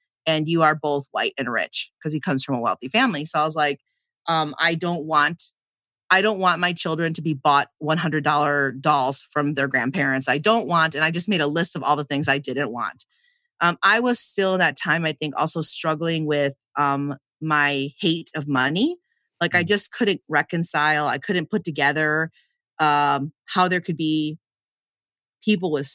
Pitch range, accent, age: 140-175 Hz, American, 30-49